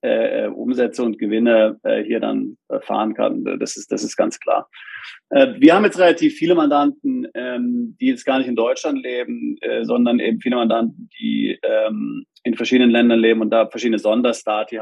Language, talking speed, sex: German, 185 wpm, male